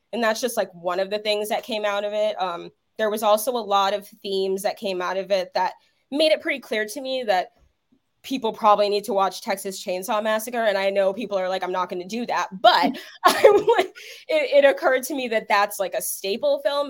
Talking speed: 235 wpm